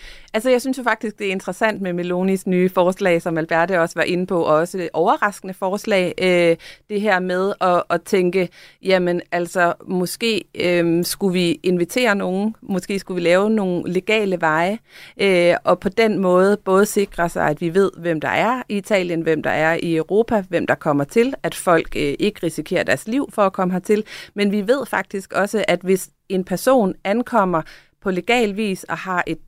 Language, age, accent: Danish, 30-49, native